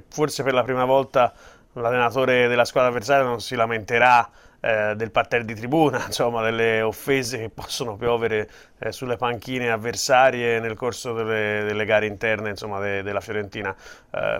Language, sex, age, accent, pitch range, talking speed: Italian, male, 30-49, native, 110-130 Hz, 160 wpm